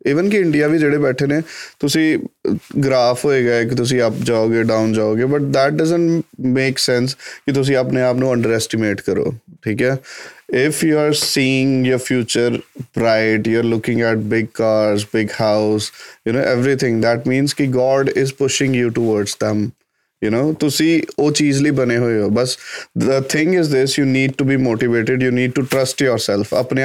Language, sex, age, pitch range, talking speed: Punjabi, male, 20-39, 120-140 Hz, 180 wpm